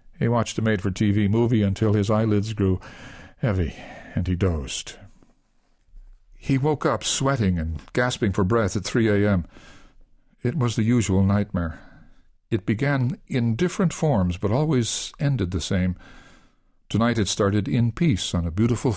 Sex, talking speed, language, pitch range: male, 150 wpm, English, 95-120 Hz